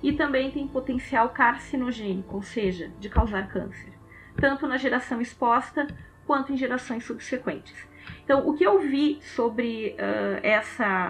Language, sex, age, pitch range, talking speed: Portuguese, female, 20-39, 220-270 Hz, 135 wpm